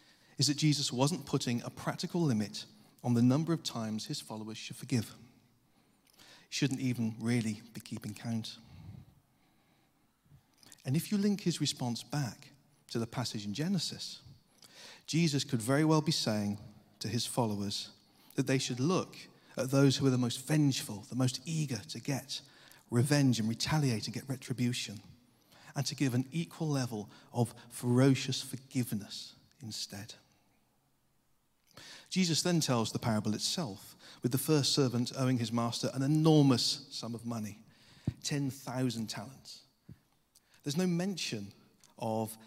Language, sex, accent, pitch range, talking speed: English, male, British, 115-145 Hz, 145 wpm